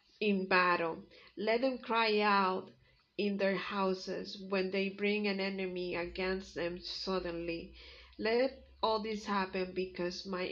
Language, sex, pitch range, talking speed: English, female, 185-210 Hz, 130 wpm